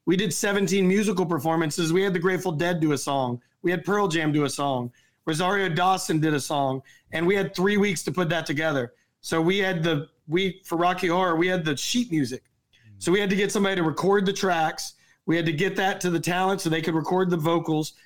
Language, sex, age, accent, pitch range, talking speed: English, male, 30-49, American, 145-185 Hz, 235 wpm